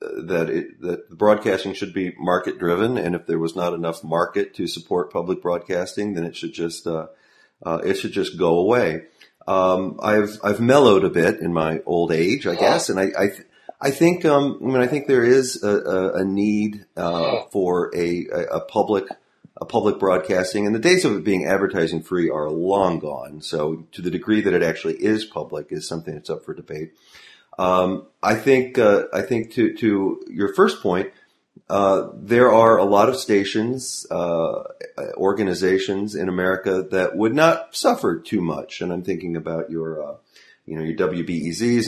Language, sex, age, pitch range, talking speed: English, male, 40-59, 85-110 Hz, 185 wpm